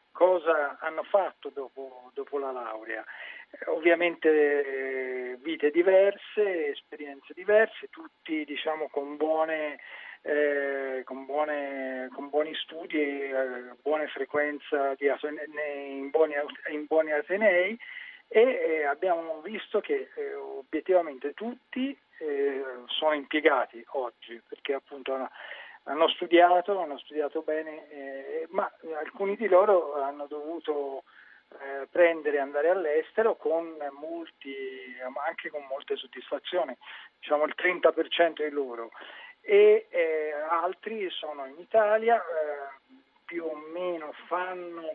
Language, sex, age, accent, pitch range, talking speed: Italian, male, 40-59, native, 140-190 Hz, 115 wpm